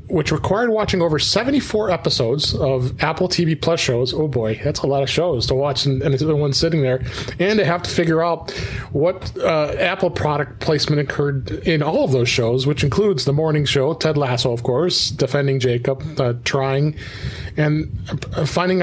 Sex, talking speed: male, 185 wpm